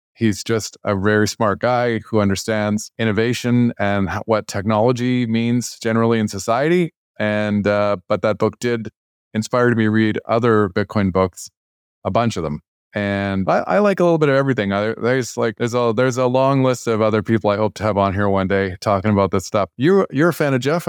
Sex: male